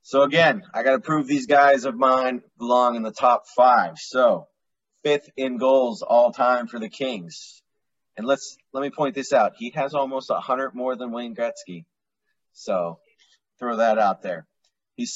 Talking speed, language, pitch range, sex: 180 wpm, English, 110-140 Hz, male